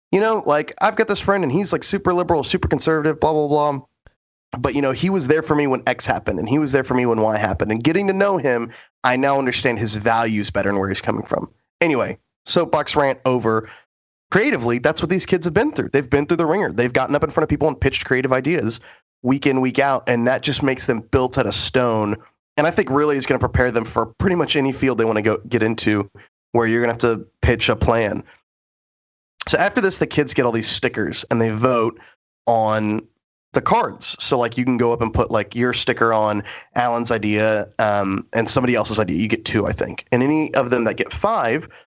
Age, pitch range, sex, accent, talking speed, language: 20-39, 115-140 Hz, male, American, 240 wpm, English